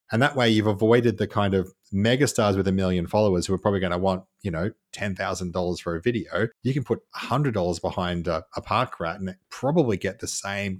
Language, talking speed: English, 215 wpm